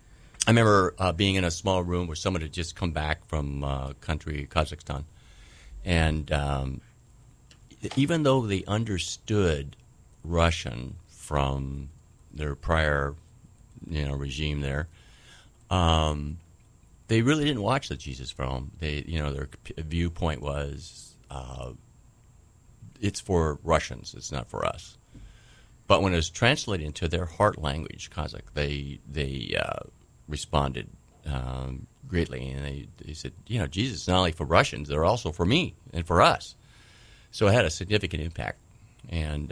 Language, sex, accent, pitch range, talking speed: English, male, American, 70-95 Hz, 145 wpm